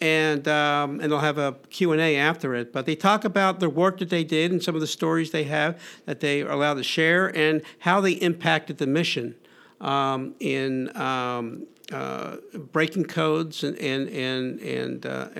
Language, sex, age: English, male, 50-69